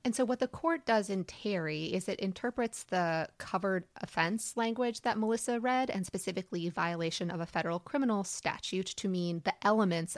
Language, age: English, 30-49